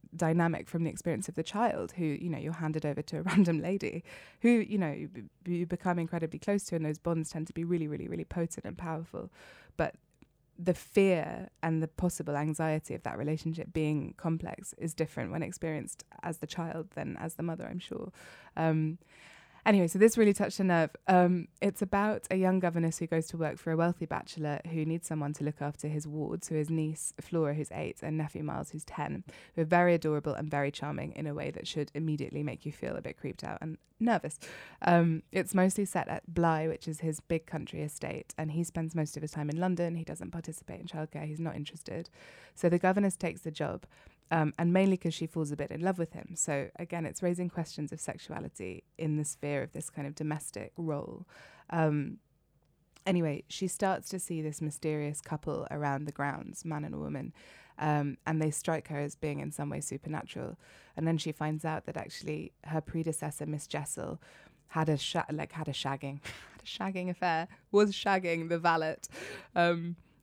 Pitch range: 150-175 Hz